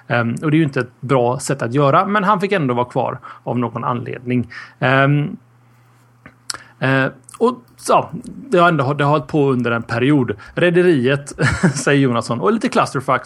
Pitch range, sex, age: 120-155 Hz, male, 30-49